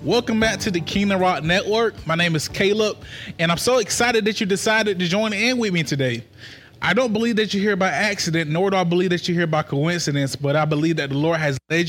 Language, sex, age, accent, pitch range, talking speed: English, male, 20-39, American, 160-215 Hz, 245 wpm